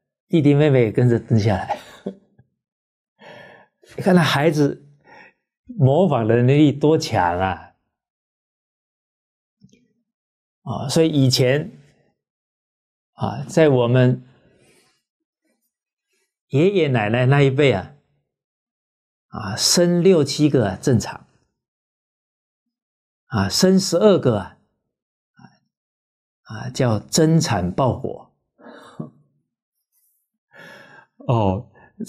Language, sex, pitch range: Chinese, male, 120-165 Hz